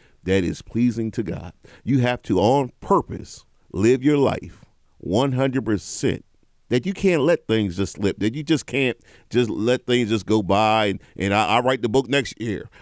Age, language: 40-59, English